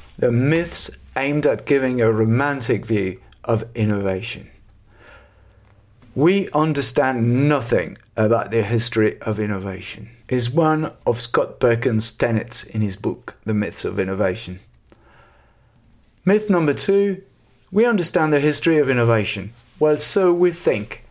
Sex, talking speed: male, 125 wpm